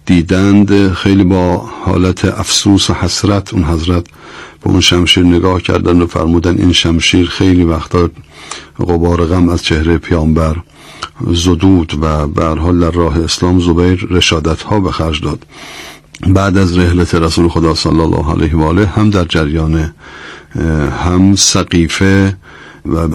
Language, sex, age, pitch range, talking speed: Persian, male, 50-69, 85-95 Hz, 135 wpm